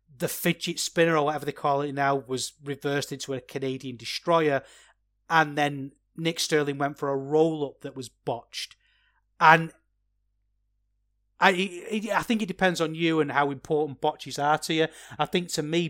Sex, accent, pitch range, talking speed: male, British, 130-155 Hz, 175 wpm